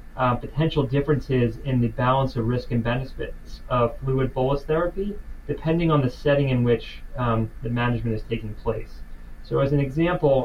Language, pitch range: English, 115-140 Hz